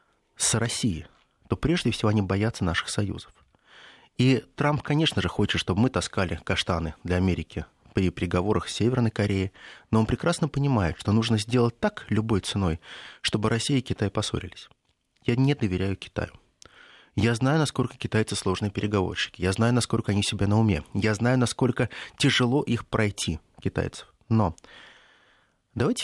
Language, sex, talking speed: Russian, male, 150 wpm